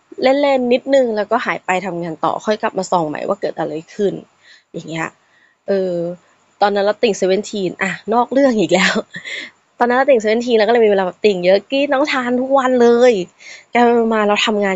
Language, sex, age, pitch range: Thai, female, 20-39, 185-240 Hz